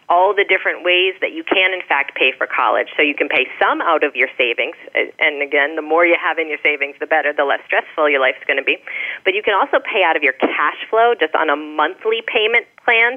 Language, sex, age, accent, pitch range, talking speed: English, female, 30-49, American, 145-190 Hz, 255 wpm